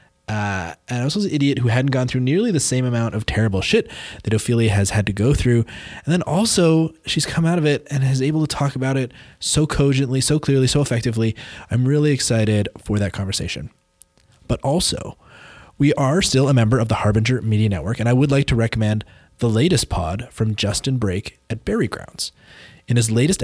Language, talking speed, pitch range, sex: English, 205 wpm, 105-140 Hz, male